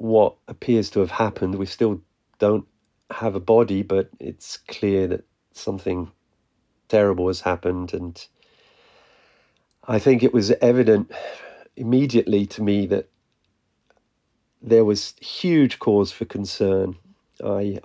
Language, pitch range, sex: English, 95-110 Hz, male